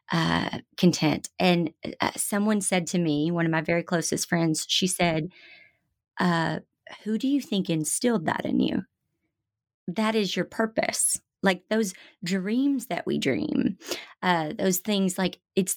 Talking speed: 150 wpm